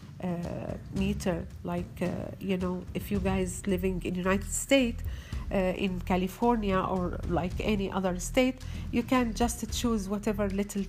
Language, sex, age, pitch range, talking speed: Arabic, female, 40-59, 185-215 Hz, 150 wpm